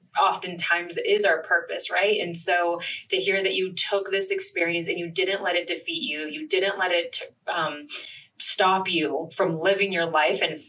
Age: 20-39